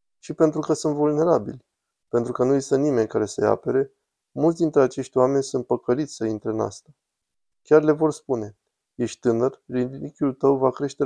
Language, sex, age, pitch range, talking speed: Romanian, male, 20-39, 115-135 Hz, 180 wpm